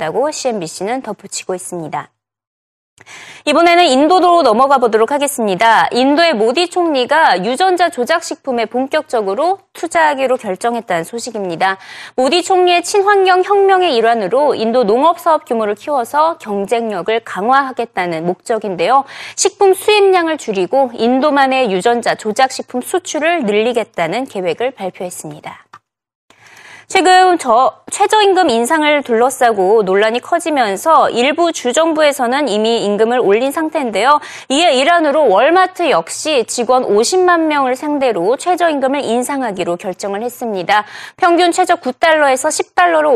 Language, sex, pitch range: Korean, female, 225-335 Hz